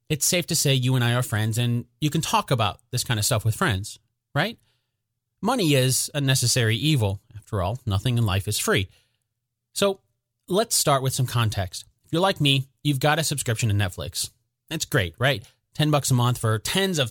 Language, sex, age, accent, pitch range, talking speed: English, male, 30-49, American, 120-165 Hz, 205 wpm